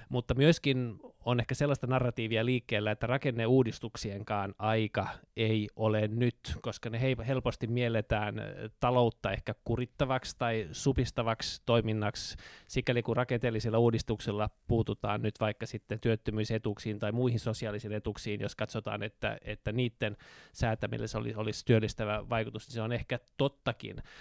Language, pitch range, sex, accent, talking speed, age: Finnish, 110-125 Hz, male, native, 130 wpm, 20-39